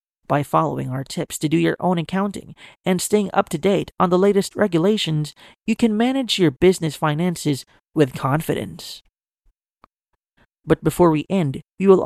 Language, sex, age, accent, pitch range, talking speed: English, male, 30-49, American, 150-195 Hz, 160 wpm